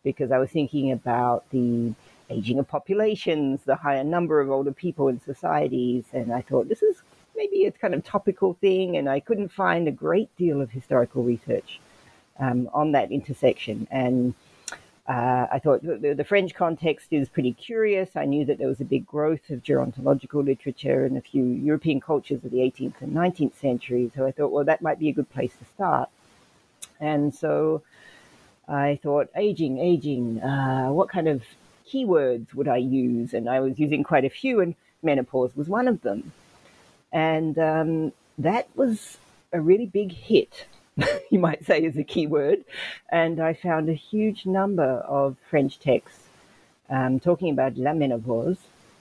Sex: female